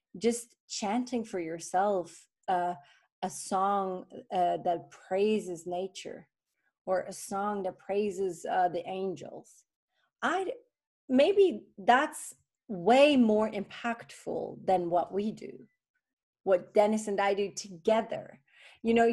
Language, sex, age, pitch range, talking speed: English, female, 30-49, 185-240 Hz, 115 wpm